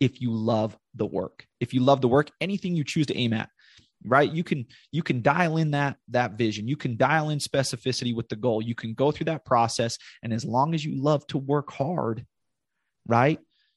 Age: 30-49